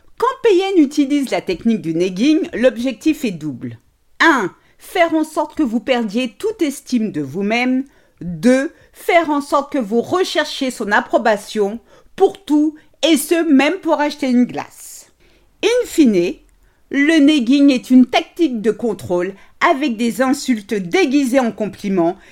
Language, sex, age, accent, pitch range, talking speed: French, female, 50-69, French, 225-325 Hz, 145 wpm